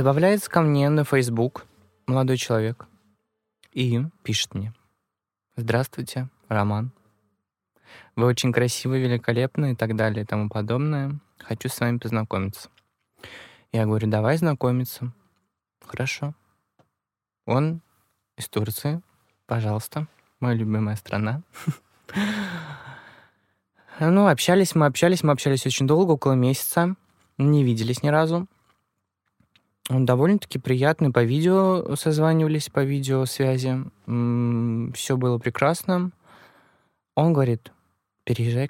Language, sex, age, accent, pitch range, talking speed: Russian, male, 20-39, native, 110-140 Hz, 100 wpm